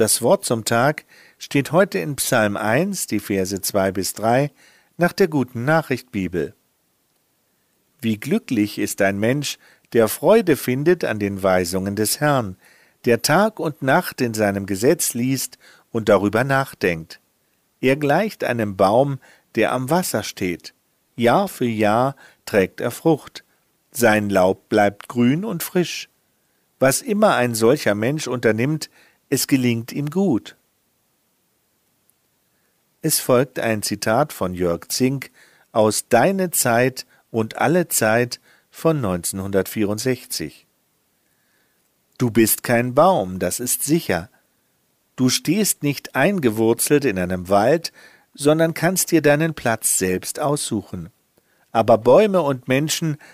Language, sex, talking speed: German, male, 125 wpm